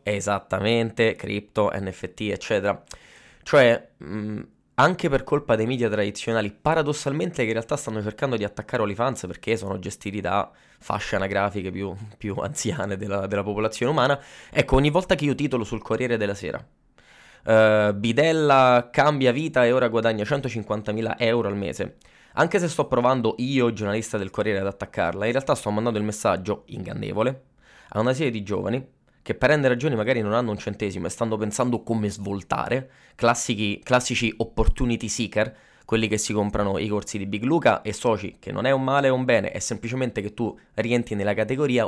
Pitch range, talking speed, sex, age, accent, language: 100-120 Hz, 170 wpm, male, 20-39, native, Italian